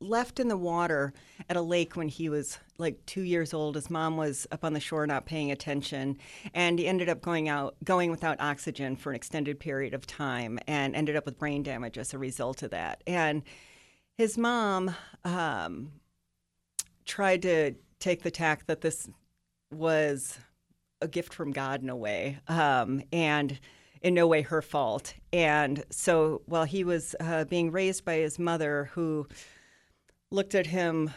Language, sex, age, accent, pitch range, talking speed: English, female, 40-59, American, 145-170 Hz, 175 wpm